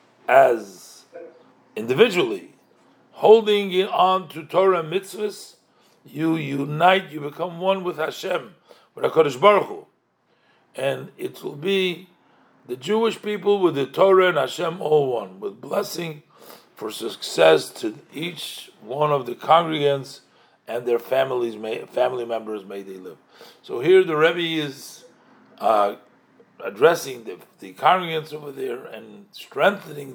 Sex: male